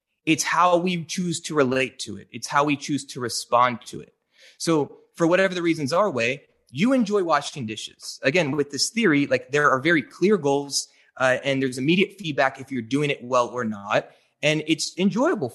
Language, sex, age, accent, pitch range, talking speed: English, male, 30-49, American, 130-170 Hz, 200 wpm